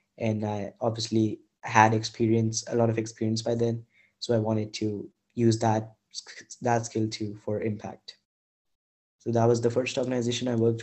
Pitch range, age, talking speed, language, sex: 110-115 Hz, 20-39, 165 wpm, English, male